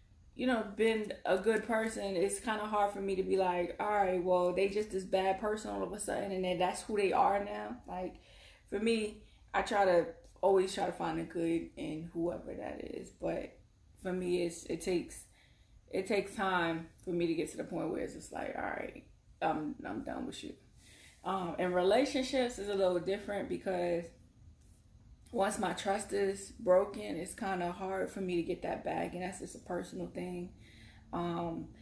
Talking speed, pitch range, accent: 205 wpm, 165-195 Hz, American